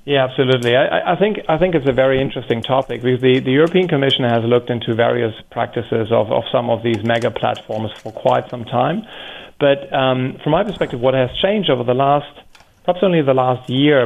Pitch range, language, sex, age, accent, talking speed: 115-130 Hz, English, male, 40-59, German, 210 wpm